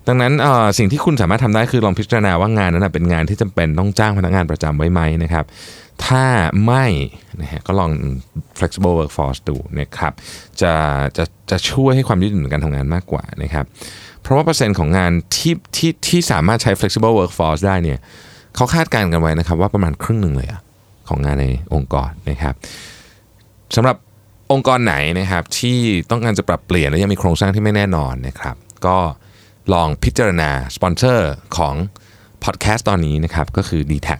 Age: 20-39